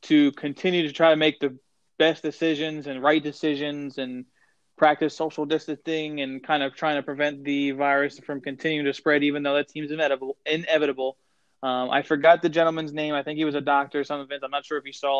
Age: 20-39